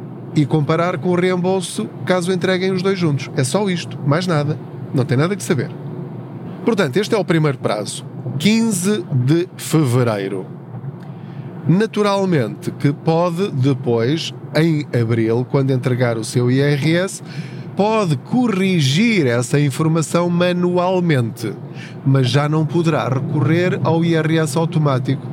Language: Portuguese